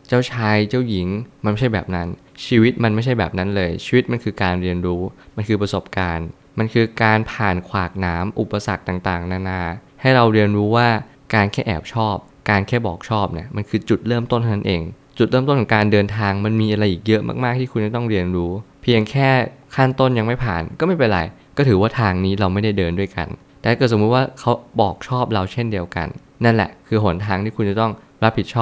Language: Thai